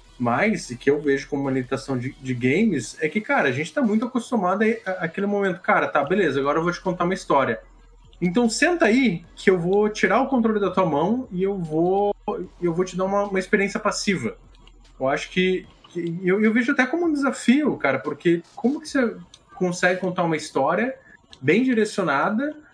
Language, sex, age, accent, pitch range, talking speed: Portuguese, male, 20-39, Brazilian, 145-225 Hz, 200 wpm